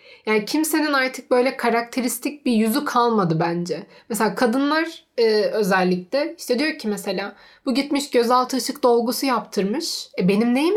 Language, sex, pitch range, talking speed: Turkish, female, 215-275 Hz, 145 wpm